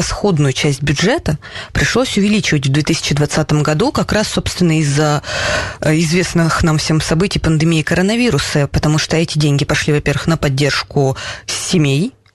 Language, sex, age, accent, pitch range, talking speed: Russian, female, 20-39, native, 145-170 Hz, 130 wpm